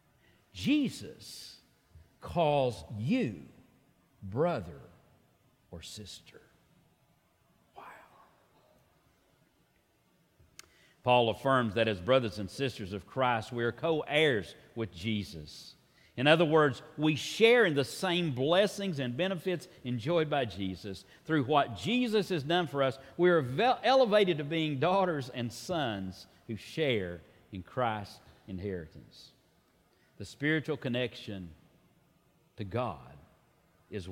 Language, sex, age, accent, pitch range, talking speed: English, male, 50-69, American, 100-150 Hz, 105 wpm